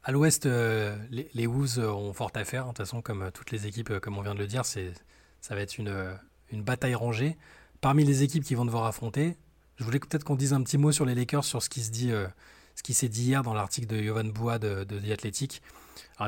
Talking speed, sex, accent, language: 255 wpm, male, French, French